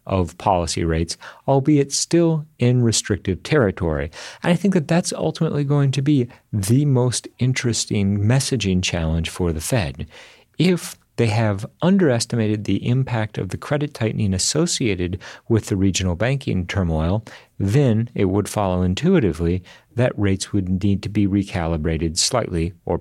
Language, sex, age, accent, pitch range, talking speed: English, male, 40-59, American, 90-120 Hz, 145 wpm